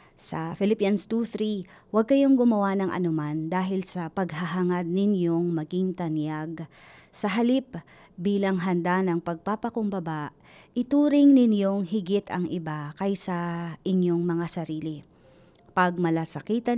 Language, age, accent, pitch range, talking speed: Filipino, 30-49, native, 170-205 Hz, 105 wpm